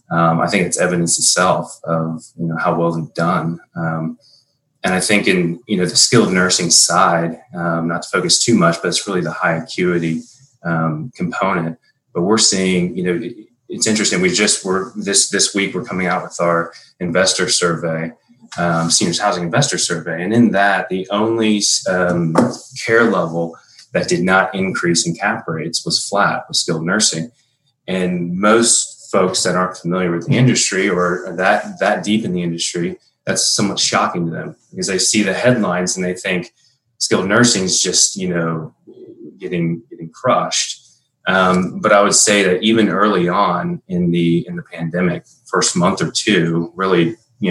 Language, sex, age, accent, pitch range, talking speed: English, male, 30-49, American, 85-105 Hz, 180 wpm